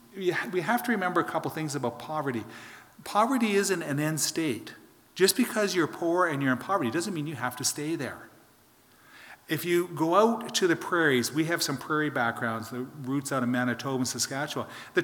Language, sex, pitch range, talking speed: English, male, 120-160 Hz, 195 wpm